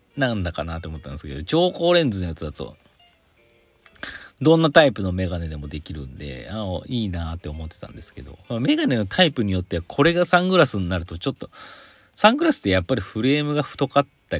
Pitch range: 85-115 Hz